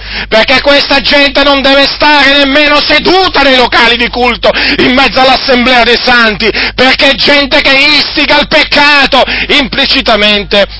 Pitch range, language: 245-280 Hz, Italian